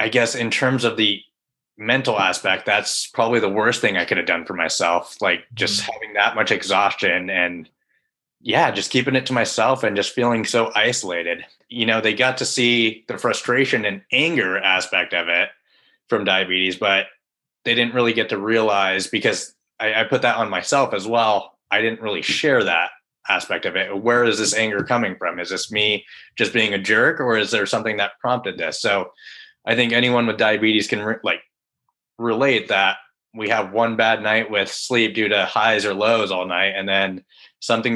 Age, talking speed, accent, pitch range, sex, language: 20-39, 195 wpm, American, 105-120 Hz, male, English